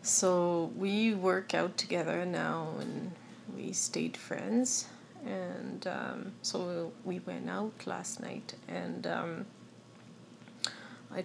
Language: English